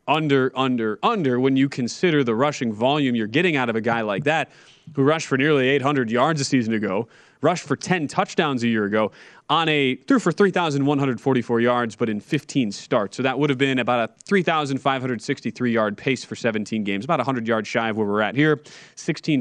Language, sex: English, male